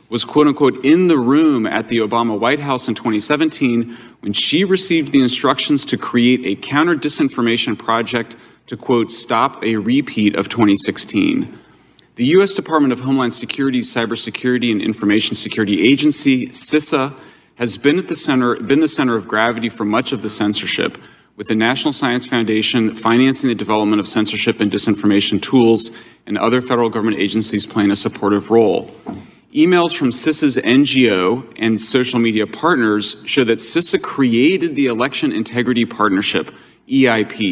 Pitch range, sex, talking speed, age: 110-140 Hz, male, 155 wpm, 30-49